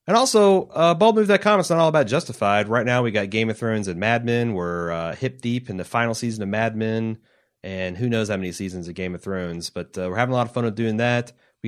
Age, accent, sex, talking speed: 30-49, American, male, 260 wpm